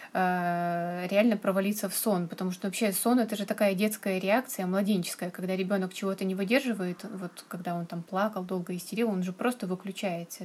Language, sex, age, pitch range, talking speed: Russian, female, 20-39, 185-215 Hz, 180 wpm